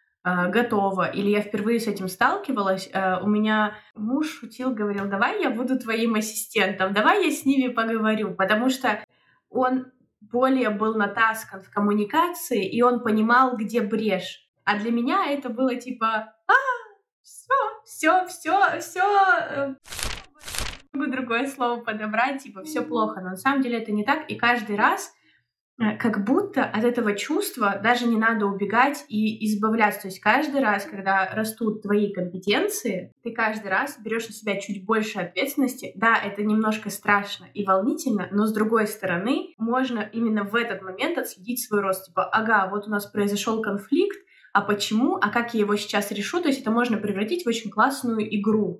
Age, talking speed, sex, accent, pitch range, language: 20-39, 160 wpm, female, native, 205-255 Hz, Russian